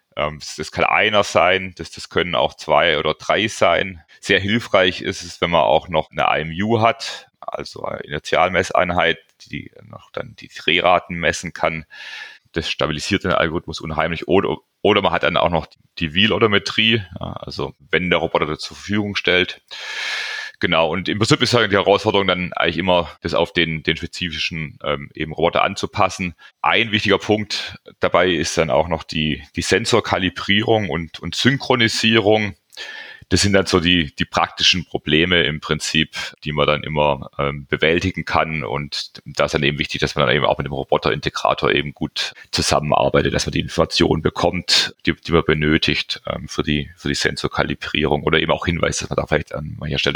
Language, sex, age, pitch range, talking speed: English, male, 30-49, 75-100 Hz, 180 wpm